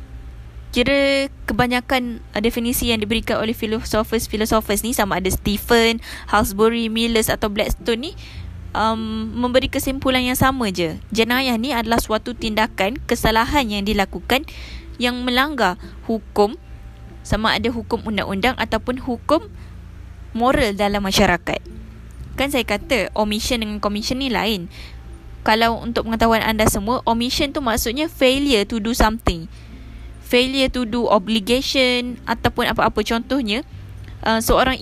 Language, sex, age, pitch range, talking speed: Malay, female, 20-39, 210-250 Hz, 120 wpm